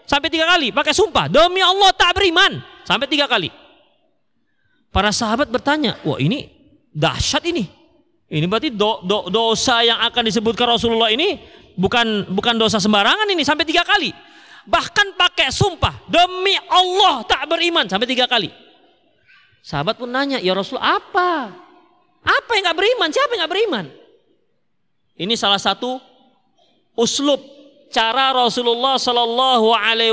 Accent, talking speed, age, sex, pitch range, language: native, 130 wpm, 30-49, male, 235-350 Hz, Indonesian